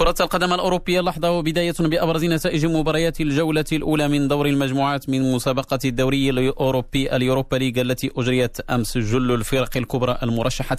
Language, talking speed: Arabic, 140 wpm